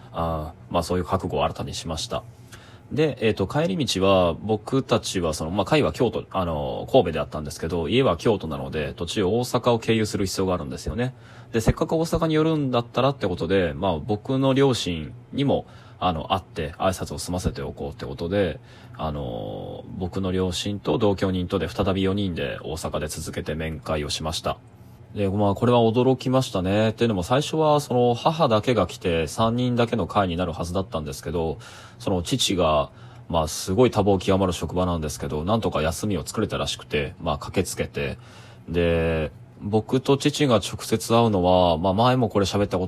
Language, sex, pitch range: Japanese, male, 85-115 Hz